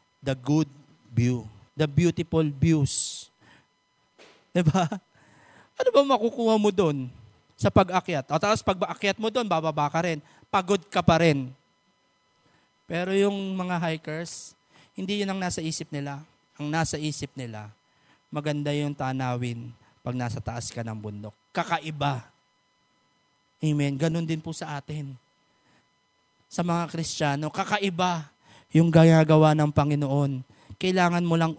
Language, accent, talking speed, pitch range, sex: English, Filipino, 125 wpm, 145-185 Hz, male